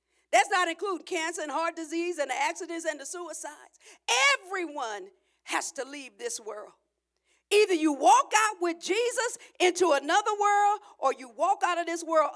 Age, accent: 50-69, American